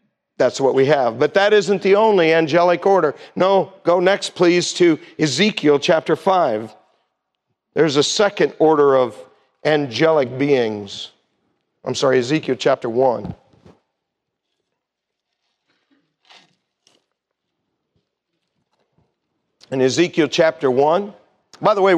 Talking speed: 105 wpm